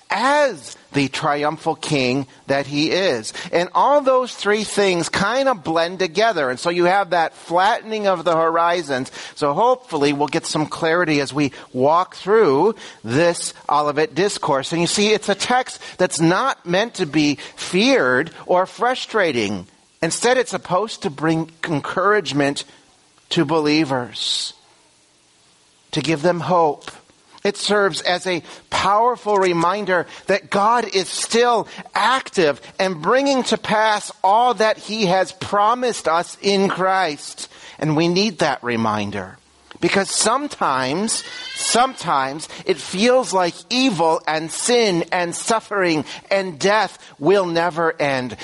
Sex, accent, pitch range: male, American, 155-210 Hz